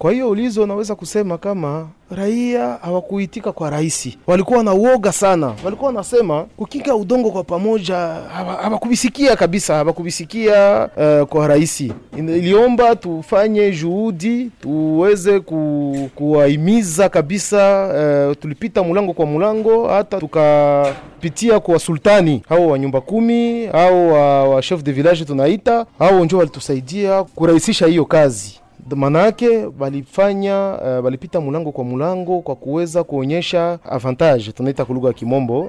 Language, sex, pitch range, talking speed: French, male, 140-200 Hz, 120 wpm